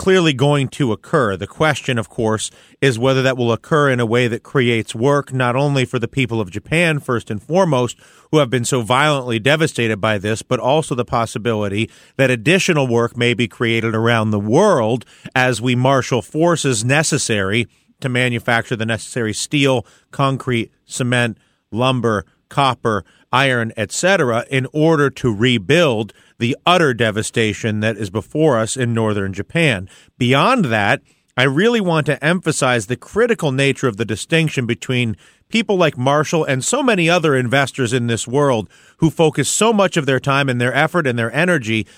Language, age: English, 40-59